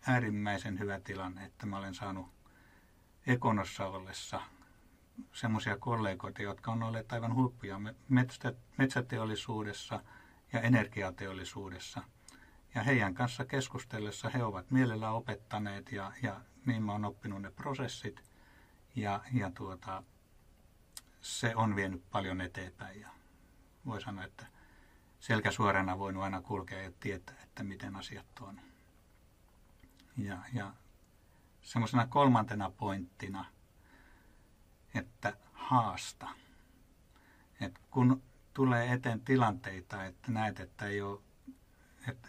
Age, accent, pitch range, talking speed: 60-79, native, 95-120 Hz, 110 wpm